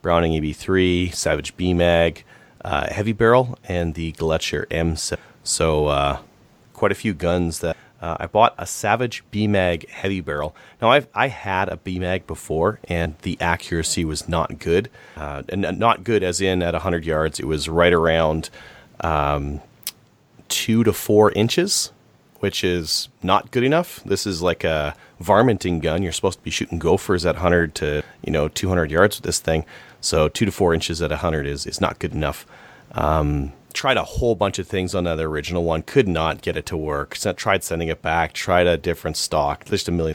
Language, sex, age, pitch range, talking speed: English, male, 30-49, 80-100 Hz, 190 wpm